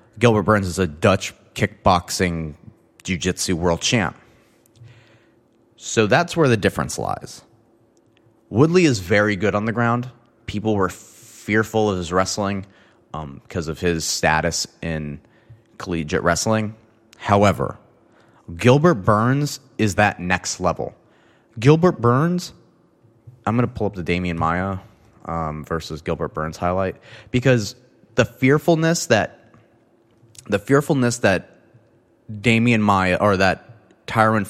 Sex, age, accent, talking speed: male, 30-49, American, 120 wpm